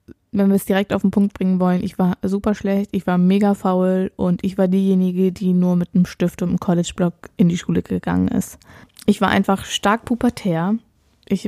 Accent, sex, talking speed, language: German, female, 210 wpm, German